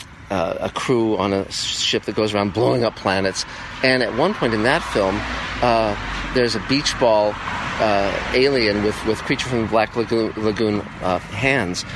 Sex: male